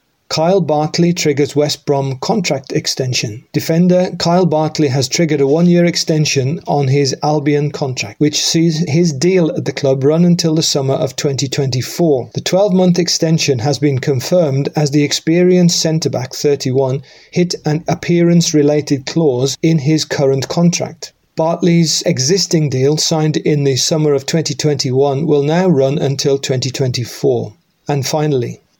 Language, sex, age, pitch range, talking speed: English, male, 40-59, 140-165 Hz, 140 wpm